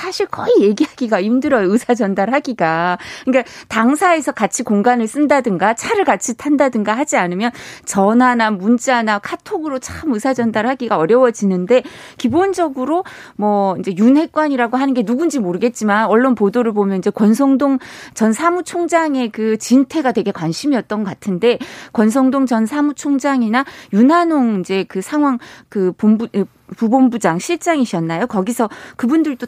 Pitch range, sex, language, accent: 210-285 Hz, female, Korean, native